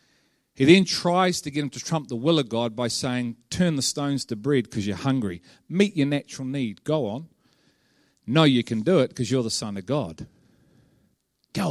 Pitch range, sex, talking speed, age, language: 130-185 Hz, male, 205 wpm, 40-59, English